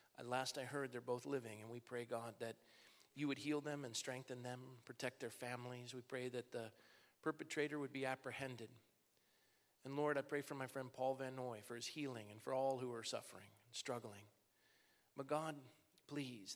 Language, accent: English, American